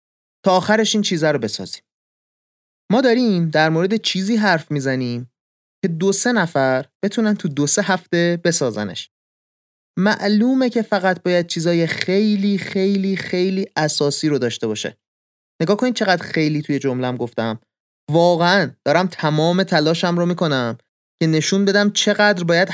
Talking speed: 145 wpm